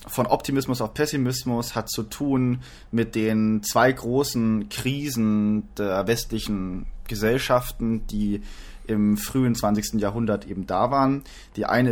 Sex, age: male, 30-49